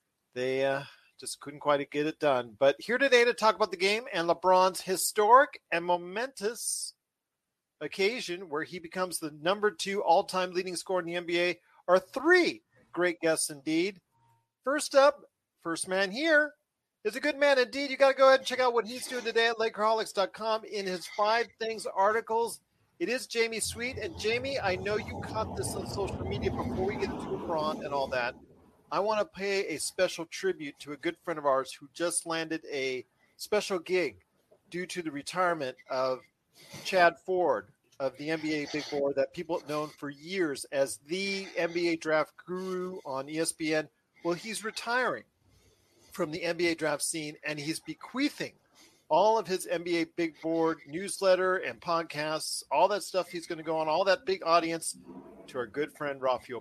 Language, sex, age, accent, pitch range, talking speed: English, male, 40-59, American, 145-210 Hz, 180 wpm